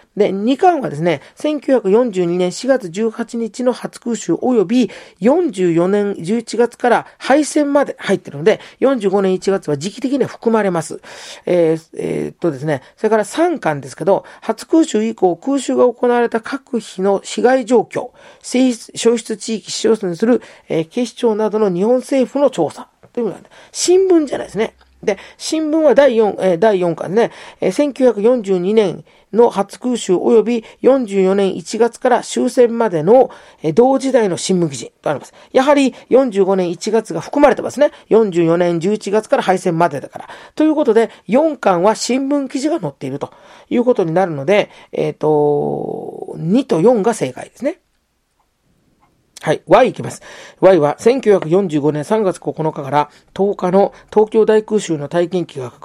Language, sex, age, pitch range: Japanese, male, 40-59, 175-250 Hz